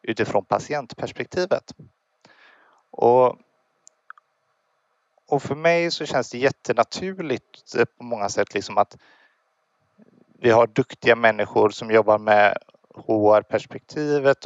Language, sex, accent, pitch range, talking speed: Swedish, male, native, 115-140 Hz, 95 wpm